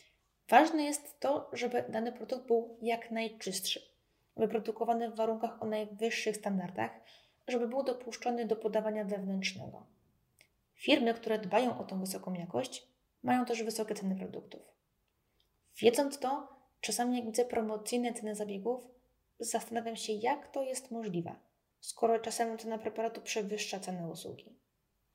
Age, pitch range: 20-39, 210-255 Hz